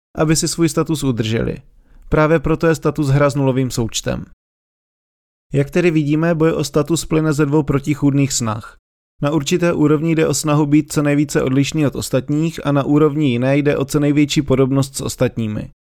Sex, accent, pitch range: male, native, 130-155 Hz